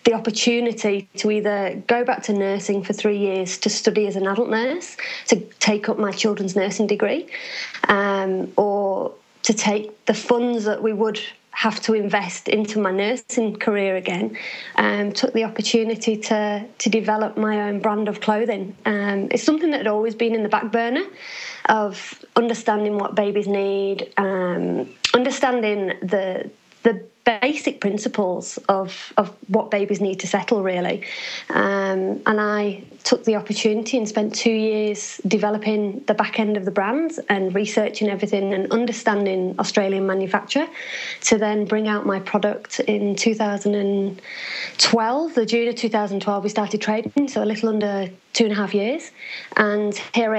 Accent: British